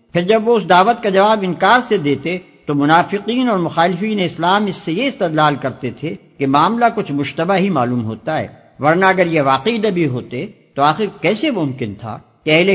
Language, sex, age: Urdu, male, 50-69